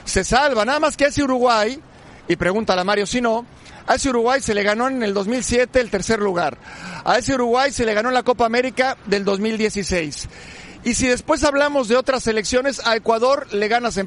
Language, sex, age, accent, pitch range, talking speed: Spanish, male, 50-69, Mexican, 210-265 Hz, 215 wpm